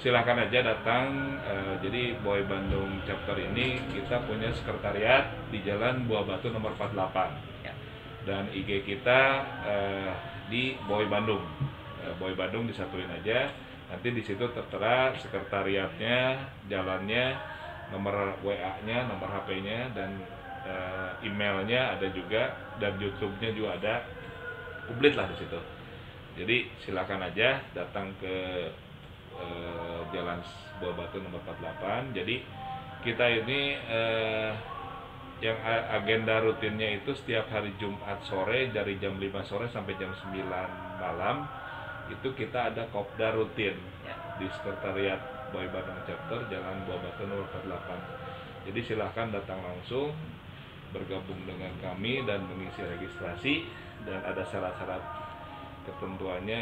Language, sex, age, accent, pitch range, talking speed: Indonesian, male, 30-49, native, 95-115 Hz, 120 wpm